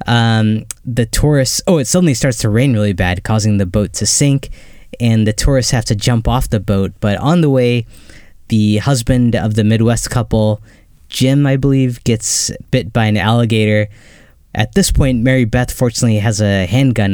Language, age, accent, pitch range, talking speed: English, 10-29, American, 100-120 Hz, 180 wpm